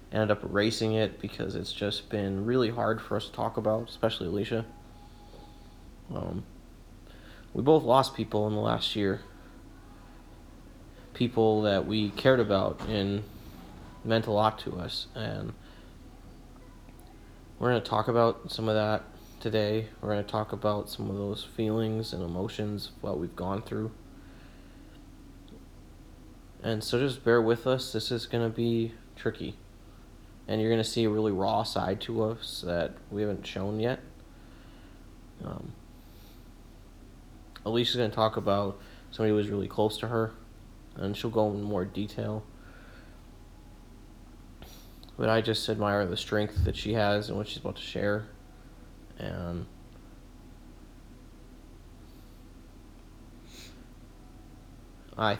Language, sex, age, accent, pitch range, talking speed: English, male, 20-39, American, 95-110 Hz, 135 wpm